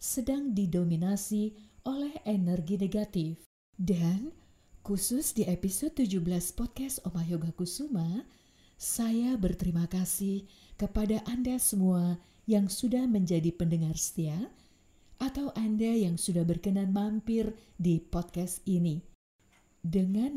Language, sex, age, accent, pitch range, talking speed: Indonesian, female, 50-69, native, 175-225 Hz, 105 wpm